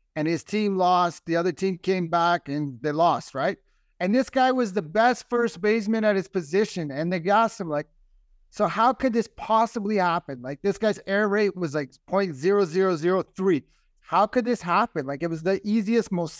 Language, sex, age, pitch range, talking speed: English, male, 30-49, 165-210 Hz, 200 wpm